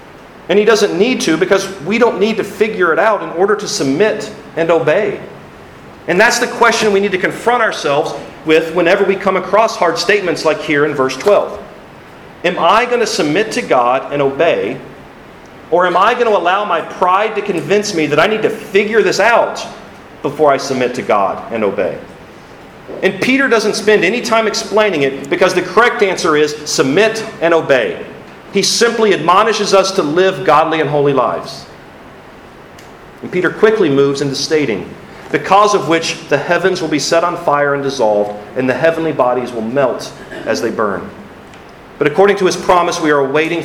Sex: male